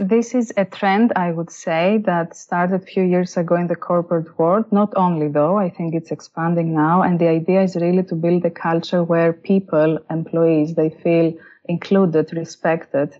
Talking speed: 185 wpm